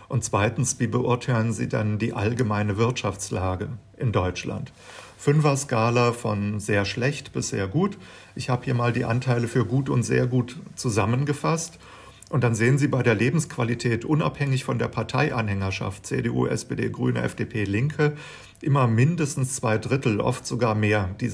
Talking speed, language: 155 wpm, German